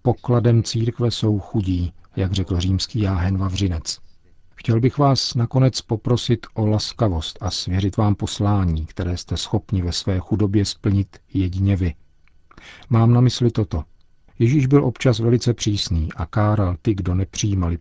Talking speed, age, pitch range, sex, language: 145 wpm, 50-69, 90-110 Hz, male, Czech